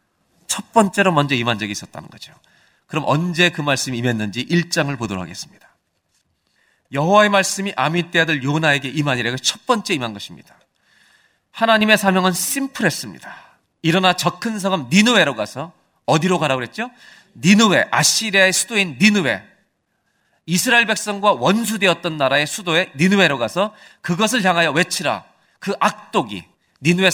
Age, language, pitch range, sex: 40-59, Korean, 155-200 Hz, male